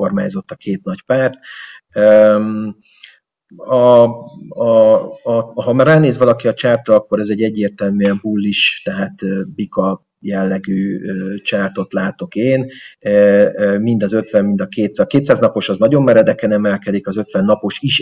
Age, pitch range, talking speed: 30-49, 100-135 Hz, 140 wpm